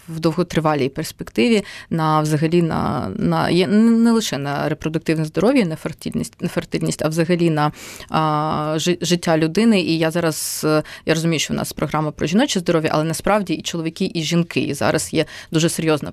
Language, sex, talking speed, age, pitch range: Ukrainian, female, 170 wpm, 20-39, 155-185 Hz